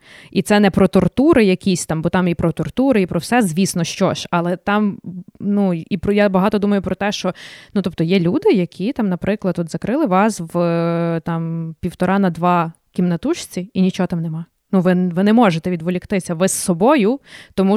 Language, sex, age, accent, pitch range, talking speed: Ukrainian, female, 20-39, native, 175-200 Hz, 195 wpm